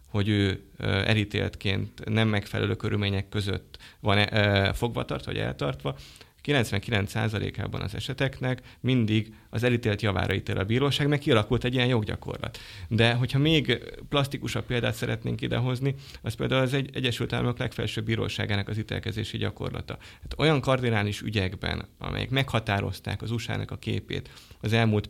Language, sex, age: Hungarian, male, 30-49